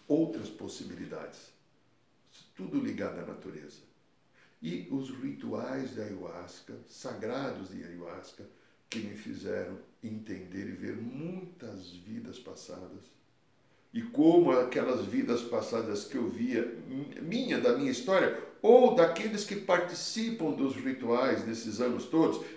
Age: 60-79